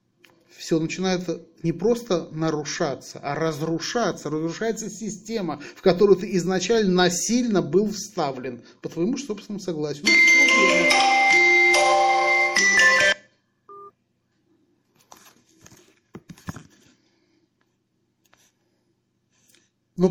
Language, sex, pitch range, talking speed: Russian, male, 155-200 Hz, 65 wpm